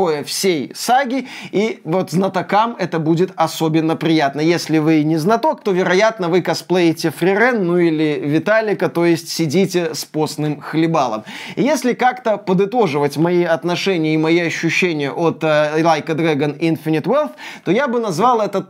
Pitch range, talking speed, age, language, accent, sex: 170-230 Hz, 155 wpm, 20-39, Russian, native, male